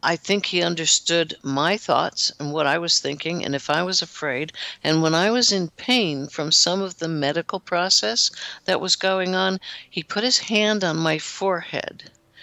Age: 60-79